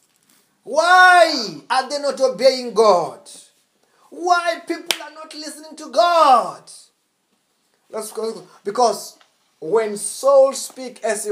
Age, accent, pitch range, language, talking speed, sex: 30-49, South African, 205-310 Hz, English, 110 wpm, male